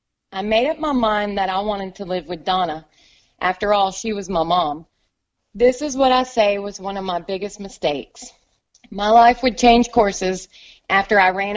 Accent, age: American, 30-49